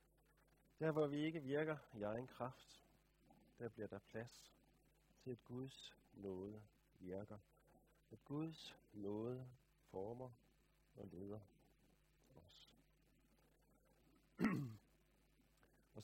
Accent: native